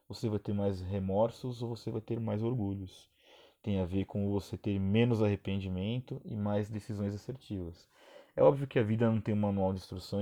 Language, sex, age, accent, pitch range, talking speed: Portuguese, male, 20-39, Brazilian, 95-115 Hz, 200 wpm